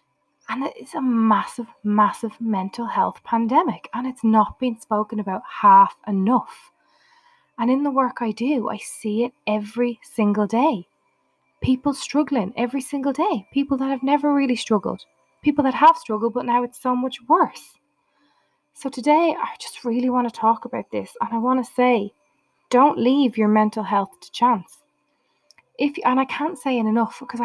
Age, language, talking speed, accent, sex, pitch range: 20-39, English, 175 wpm, Irish, female, 210-265 Hz